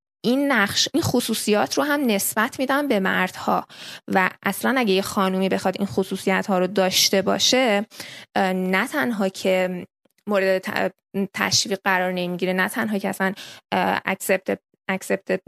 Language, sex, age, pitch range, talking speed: Persian, female, 20-39, 190-230 Hz, 130 wpm